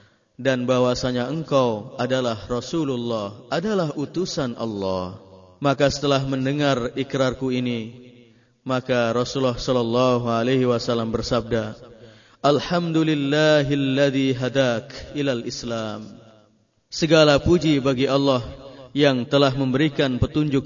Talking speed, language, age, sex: 90 wpm, Indonesian, 30-49, male